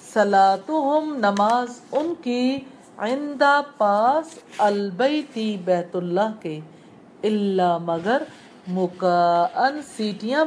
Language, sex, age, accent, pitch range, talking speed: English, female, 50-69, Indian, 195-285 Hz, 65 wpm